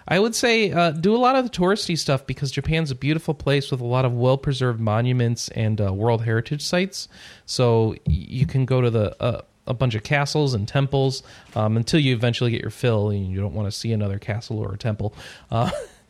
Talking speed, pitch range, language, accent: 225 wpm, 110-135 Hz, English, American